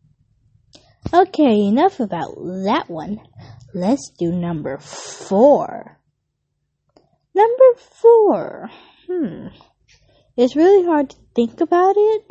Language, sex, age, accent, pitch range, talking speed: English, female, 20-39, American, 195-320 Hz, 95 wpm